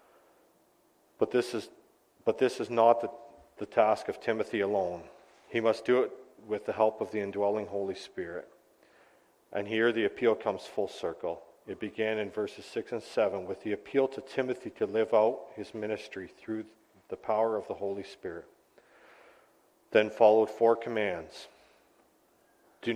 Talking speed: 155 wpm